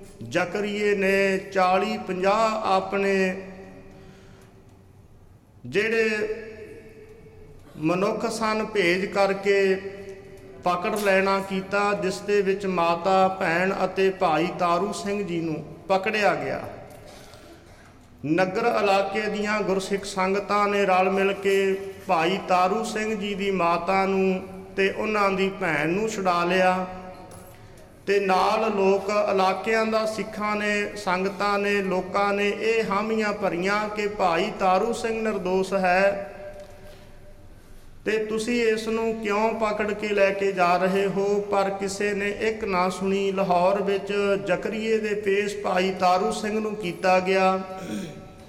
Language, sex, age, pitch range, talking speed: English, male, 50-69, 185-205 Hz, 100 wpm